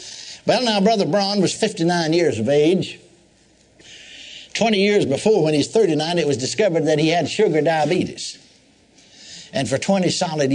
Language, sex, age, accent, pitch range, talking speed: English, male, 60-79, American, 135-180 Hz, 160 wpm